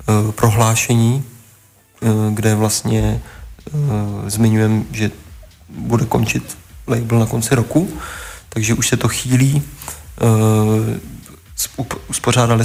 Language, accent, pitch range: Czech, native, 105-115 Hz